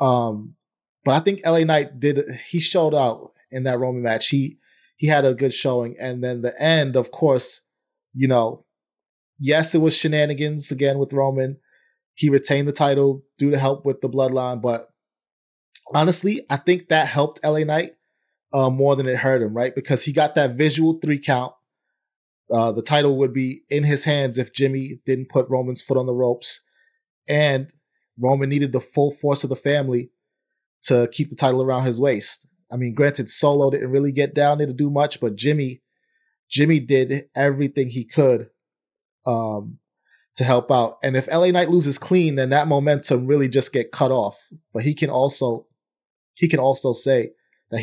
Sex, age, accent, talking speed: male, 30-49, American, 185 wpm